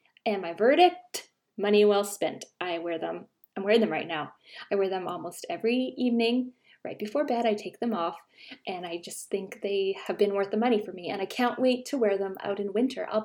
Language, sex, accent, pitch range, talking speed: English, female, American, 200-250 Hz, 225 wpm